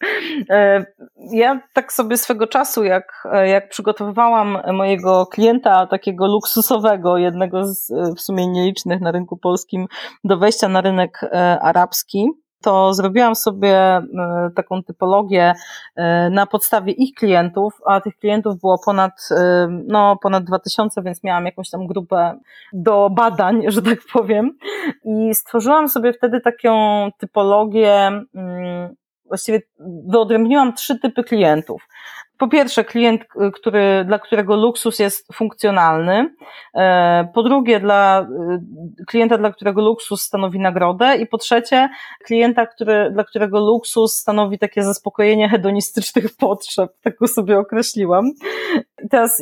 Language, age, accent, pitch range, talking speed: Polish, 30-49, native, 190-235 Hz, 120 wpm